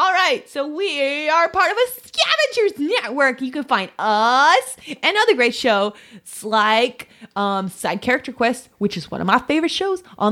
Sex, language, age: female, English, 20-39